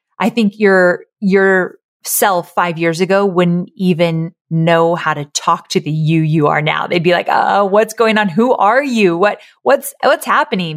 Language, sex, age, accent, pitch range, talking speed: English, female, 30-49, American, 165-220 Hz, 190 wpm